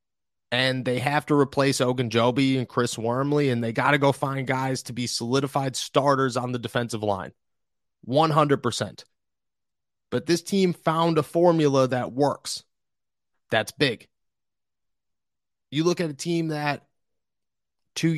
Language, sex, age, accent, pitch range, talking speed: English, male, 30-49, American, 115-150 Hz, 140 wpm